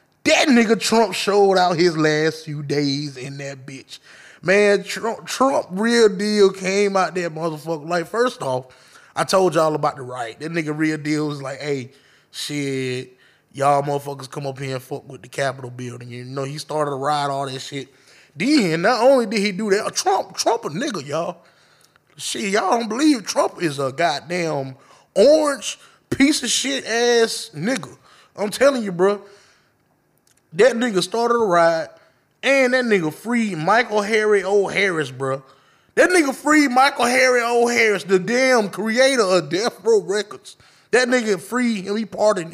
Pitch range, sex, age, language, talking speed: 145-230 Hz, male, 20-39, English, 170 wpm